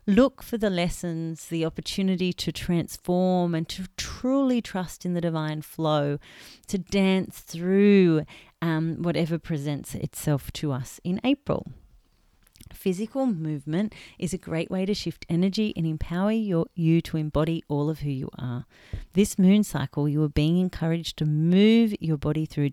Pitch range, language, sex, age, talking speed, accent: 150-180 Hz, English, female, 30-49, 155 wpm, Australian